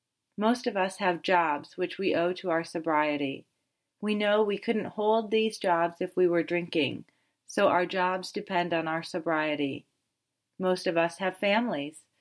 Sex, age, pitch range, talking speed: female, 30-49, 160-200 Hz, 165 wpm